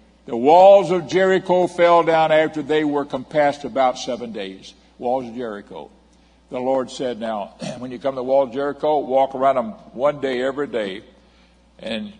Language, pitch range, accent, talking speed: English, 115-150 Hz, American, 175 wpm